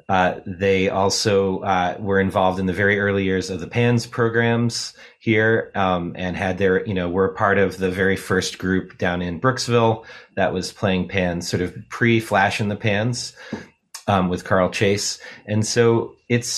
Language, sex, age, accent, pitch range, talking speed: English, male, 30-49, American, 95-115 Hz, 180 wpm